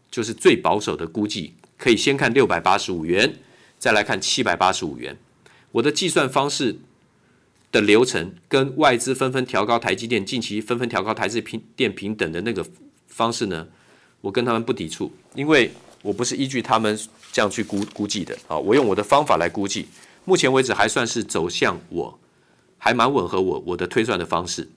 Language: Chinese